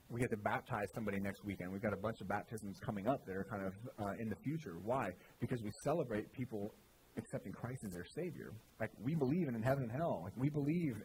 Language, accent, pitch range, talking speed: English, American, 105-135 Hz, 235 wpm